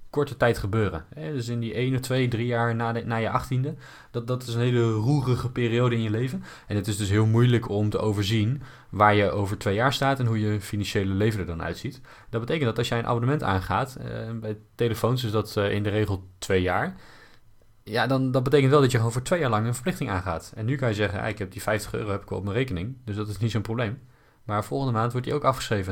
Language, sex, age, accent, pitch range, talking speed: Dutch, male, 20-39, Dutch, 105-125 Hz, 265 wpm